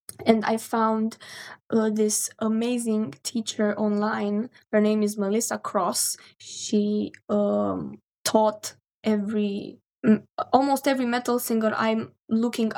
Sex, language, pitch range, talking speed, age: female, English, 210-235 Hz, 110 wpm, 10-29